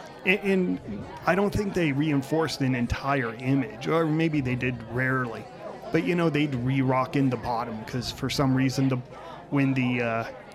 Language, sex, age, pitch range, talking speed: English, male, 30-49, 125-150 Hz, 175 wpm